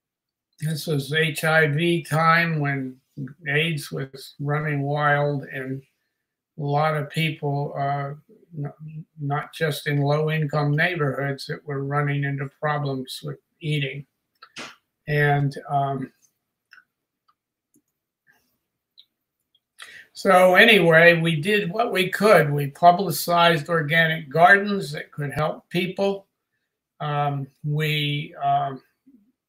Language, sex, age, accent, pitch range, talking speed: English, male, 60-79, American, 145-165 Hz, 95 wpm